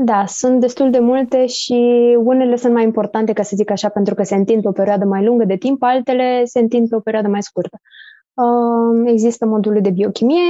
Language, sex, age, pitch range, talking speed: Romanian, female, 20-39, 200-240 Hz, 210 wpm